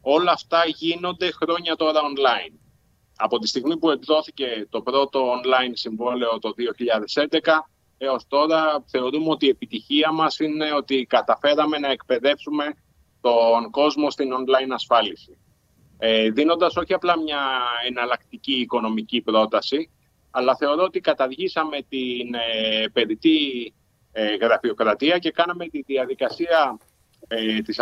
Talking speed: 115 wpm